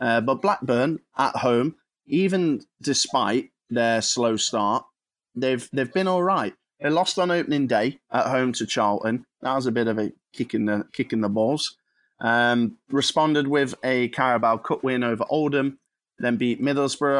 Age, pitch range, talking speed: 20-39, 115-140 Hz, 165 wpm